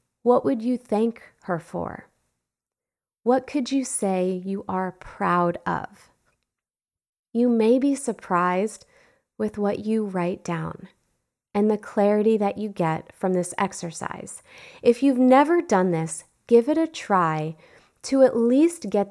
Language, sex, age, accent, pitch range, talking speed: English, female, 30-49, American, 190-255 Hz, 140 wpm